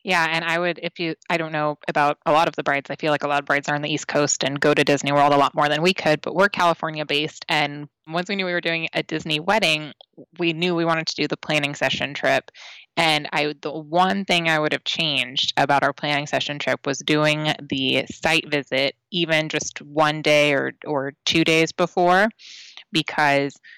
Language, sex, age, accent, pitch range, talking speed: English, female, 20-39, American, 150-170 Hz, 230 wpm